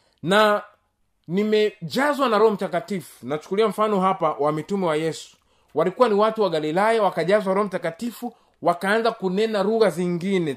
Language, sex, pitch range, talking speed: Swahili, male, 180-255 Hz, 135 wpm